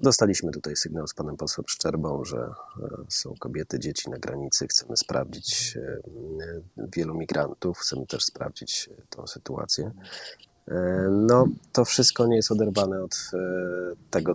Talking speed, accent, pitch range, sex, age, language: 125 wpm, native, 95-115 Hz, male, 30-49, Polish